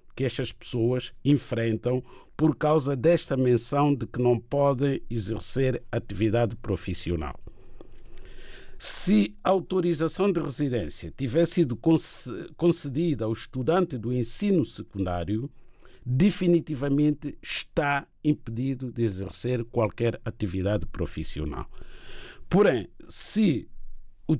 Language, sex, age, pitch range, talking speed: Portuguese, male, 50-69, 110-150 Hz, 95 wpm